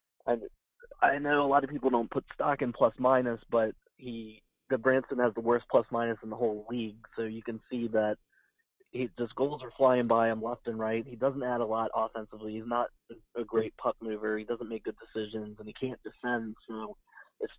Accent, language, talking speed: American, English, 210 wpm